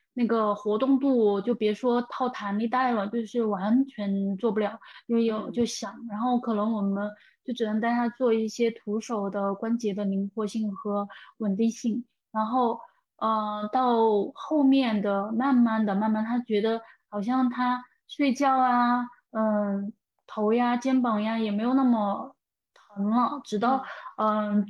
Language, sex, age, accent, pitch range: Chinese, female, 10-29, native, 215-255 Hz